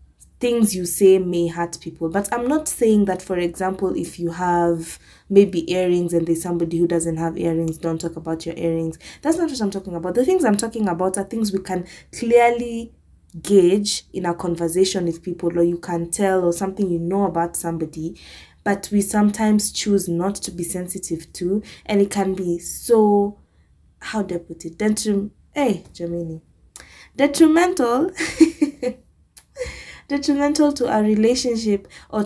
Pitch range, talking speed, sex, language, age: 170-210 Hz, 165 wpm, female, English, 20-39